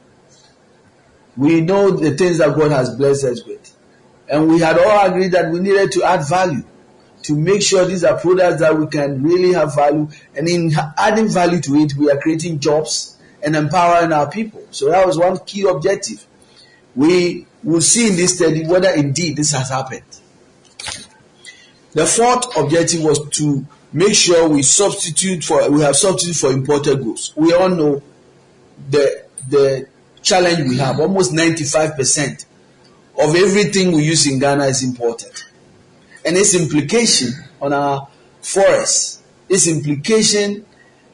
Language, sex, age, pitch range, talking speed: English, male, 50-69, 145-185 Hz, 155 wpm